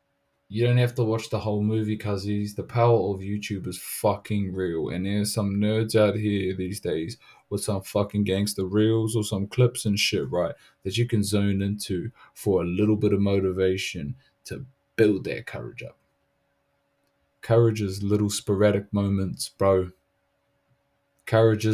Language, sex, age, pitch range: English, male, 20-39, 95-110 Hz